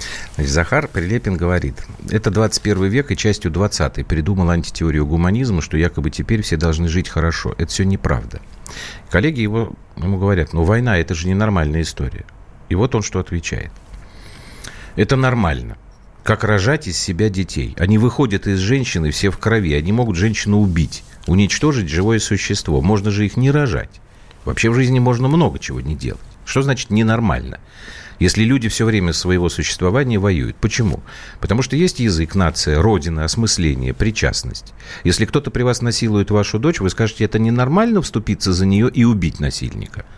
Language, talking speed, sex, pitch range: Russian, 160 wpm, male, 85-115 Hz